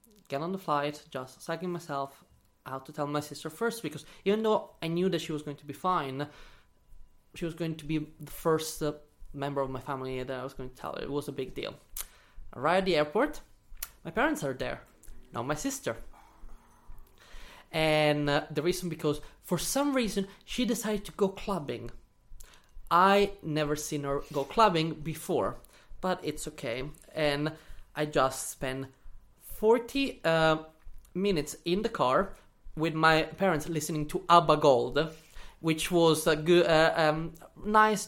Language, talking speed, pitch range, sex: English, 170 wpm, 140-170 Hz, male